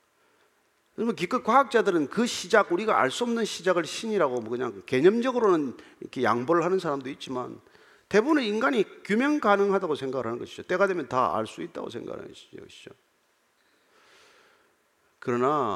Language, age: Korean, 40-59